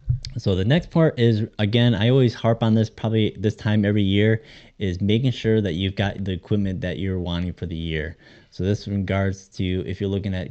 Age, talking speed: 20-39, 215 wpm